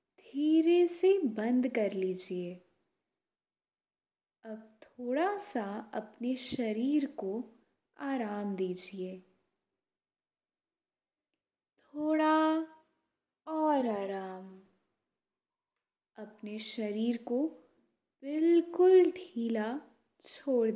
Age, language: 10-29, Hindi